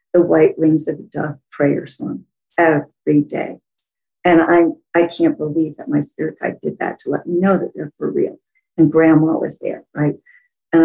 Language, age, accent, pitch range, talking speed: English, 50-69, American, 165-225 Hz, 195 wpm